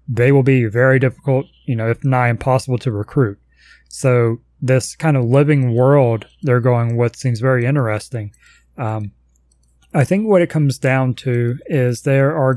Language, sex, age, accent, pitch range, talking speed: English, male, 30-49, American, 115-135 Hz, 165 wpm